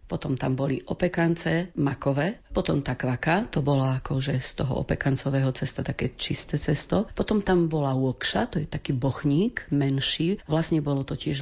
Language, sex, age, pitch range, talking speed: Slovak, female, 40-59, 135-155 Hz, 160 wpm